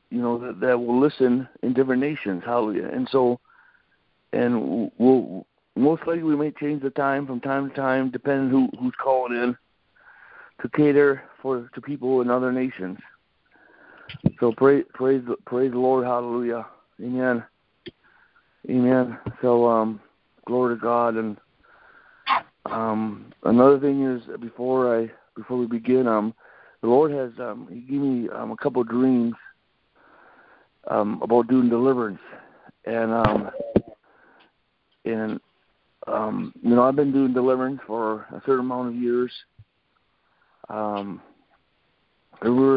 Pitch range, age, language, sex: 115-135 Hz, 60-79, English, male